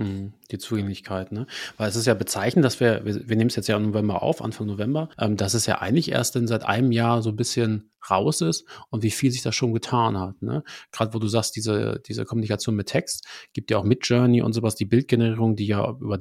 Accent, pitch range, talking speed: German, 105-125 Hz, 245 wpm